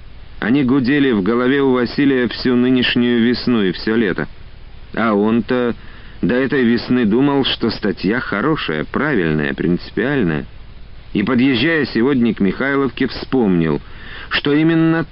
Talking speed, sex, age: 125 wpm, male, 40-59